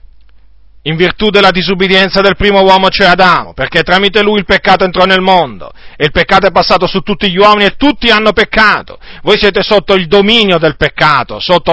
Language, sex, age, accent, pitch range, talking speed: Italian, male, 50-69, native, 120-200 Hz, 195 wpm